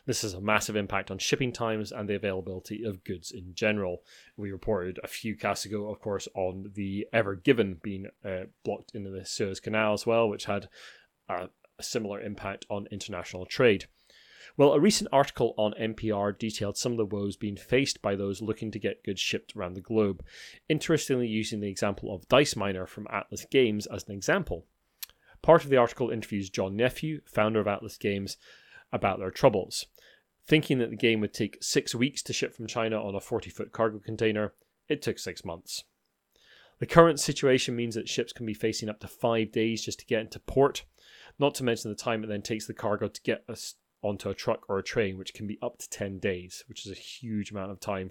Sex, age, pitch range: male, 30-49, 100-115 Hz